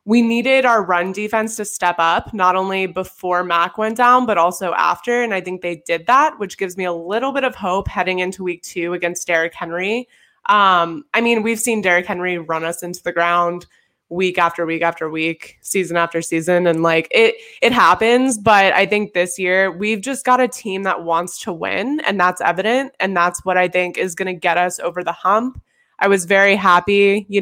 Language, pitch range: English, 180-220 Hz